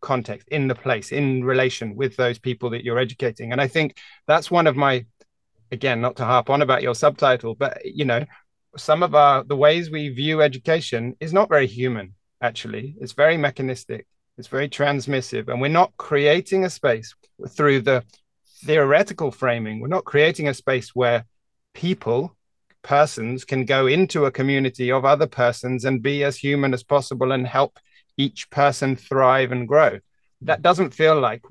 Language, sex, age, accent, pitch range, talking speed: English, male, 30-49, British, 125-145 Hz, 175 wpm